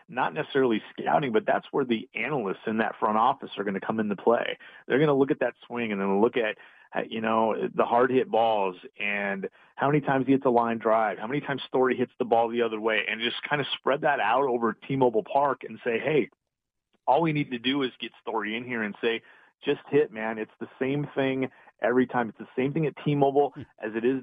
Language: English